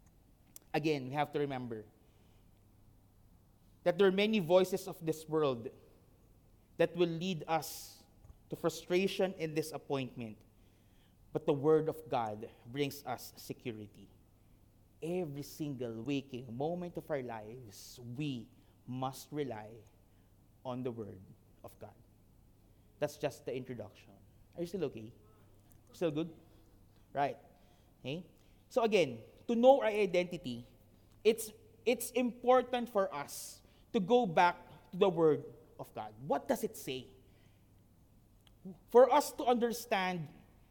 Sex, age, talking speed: male, 30-49, 120 wpm